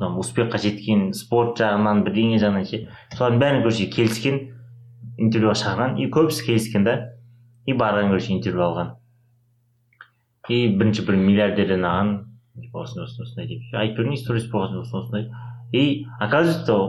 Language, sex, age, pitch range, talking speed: Russian, male, 30-49, 100-120 Hz, 90 wpm